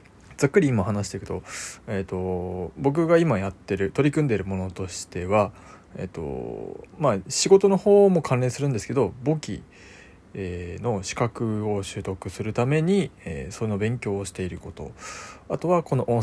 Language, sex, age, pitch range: Japanese, male, 20-39, 95-125 Hz